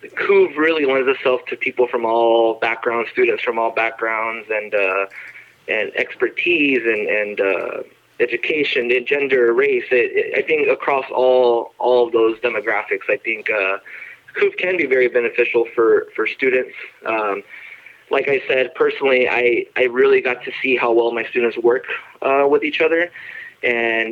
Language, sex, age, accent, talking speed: English, male, 20-39, American, 160 wpm